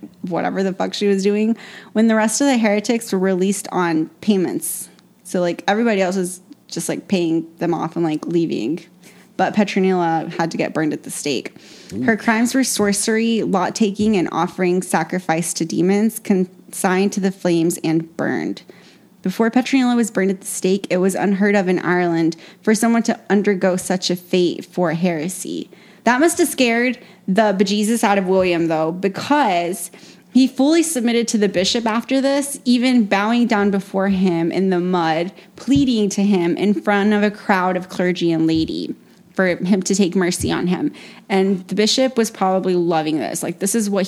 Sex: female